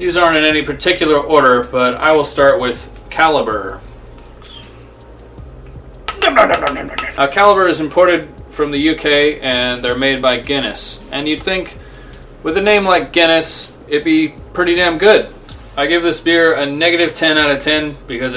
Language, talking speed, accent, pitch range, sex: English, 155 wpm, American, 130-165 Hz, male